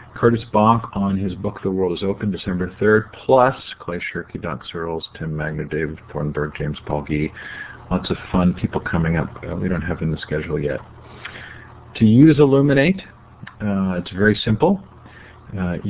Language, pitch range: English, 90-105 Hz